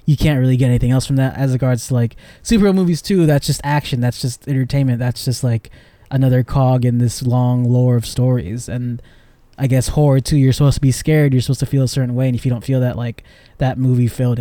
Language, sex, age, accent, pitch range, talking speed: English, male, 20-39, American, 125-150 Hz, 245 wpm